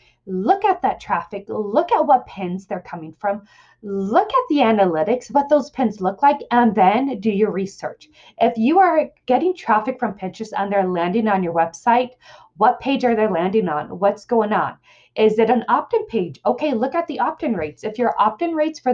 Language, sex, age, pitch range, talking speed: English, female, 20-39, 195-270 Hz, 200 wpm